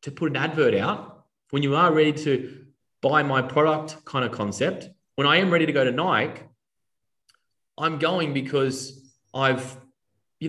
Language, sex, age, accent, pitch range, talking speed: English, male, 20-39, Australian, 125-155 Hz, 165 wpm